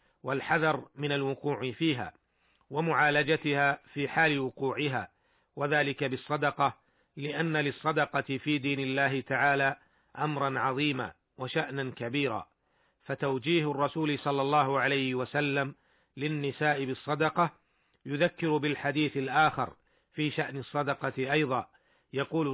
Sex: male